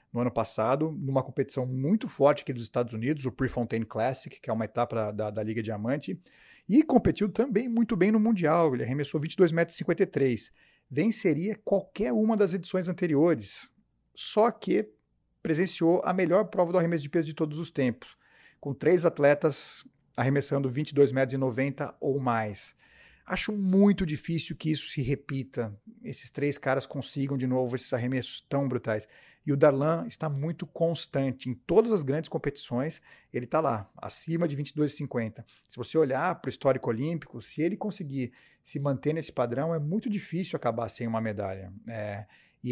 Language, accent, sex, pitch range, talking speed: Portuguese, Brazilian, male, 125-165 Hz, 165 wpm